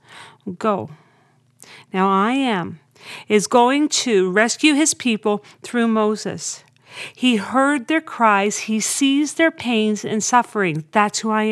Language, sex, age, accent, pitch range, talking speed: English, female, 40-59, American, 190-255 Hz, 130 wpm